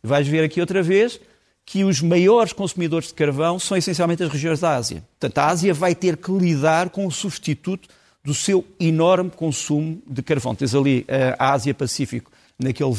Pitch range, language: 145-185 Hz, Portuguese